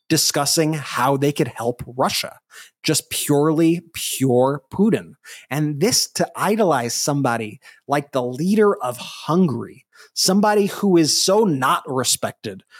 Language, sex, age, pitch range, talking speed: English, male, 30-49, 135-180 Hz, 120 wpm